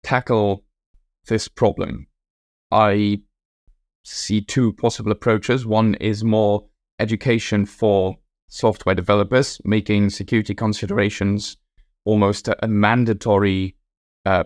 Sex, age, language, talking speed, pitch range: male, 10-29, English, 95 wpm, 95-110 Hz